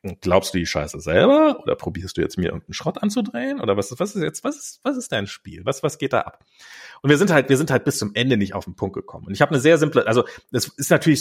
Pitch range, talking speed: 105-165 Hz, 295 wpm